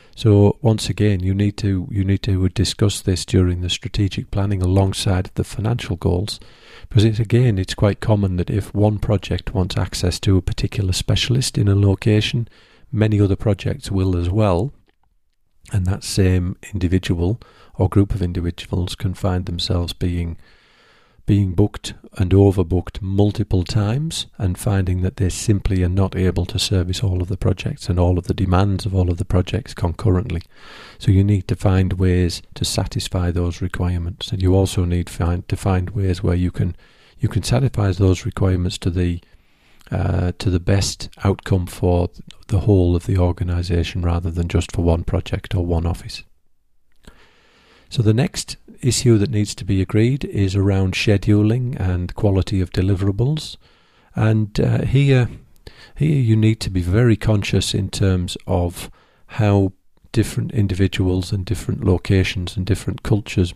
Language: English